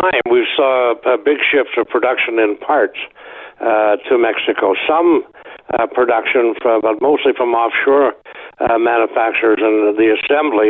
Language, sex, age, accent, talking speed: English, male, 60-79, American, 140 wpm